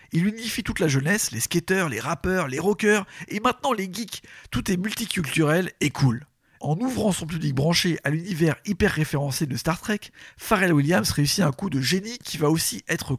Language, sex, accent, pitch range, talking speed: French, male, French, 145-190 Hz, 195 wpm